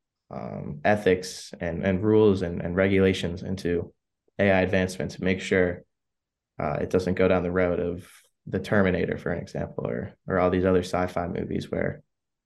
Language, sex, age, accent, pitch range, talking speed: English, male, 20-39, American, 90-100 Hz, 170 wpm